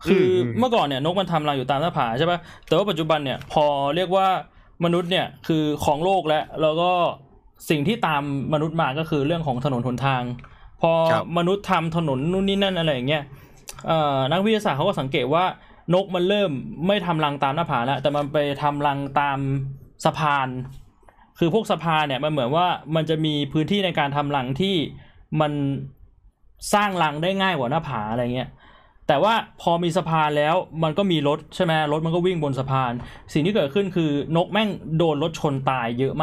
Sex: male